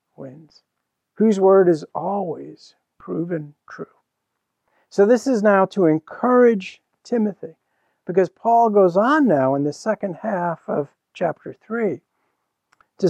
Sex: male